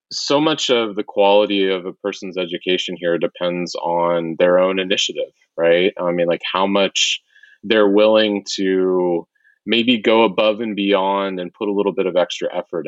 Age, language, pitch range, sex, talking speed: 30-49, English, 90-115 Hz, male, 170 wpm